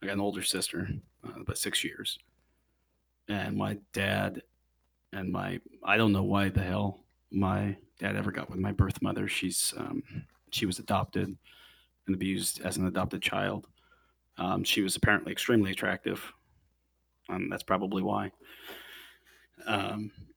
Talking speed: 145 wpm